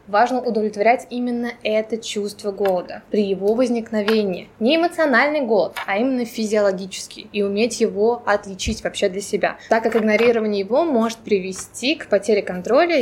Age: 20-39